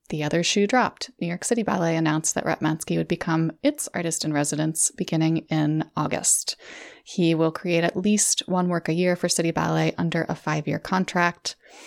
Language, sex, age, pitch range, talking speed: English, female, 20-39, 160-195 Hz, 185 wpm